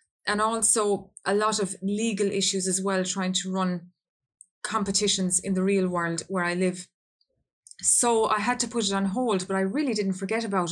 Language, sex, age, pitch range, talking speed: English, female, 20-39, 190-220 Hz, 190 wpm